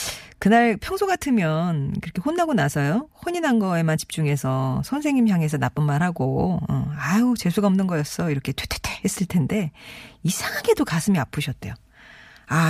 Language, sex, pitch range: Korean, female, 150-220 Hz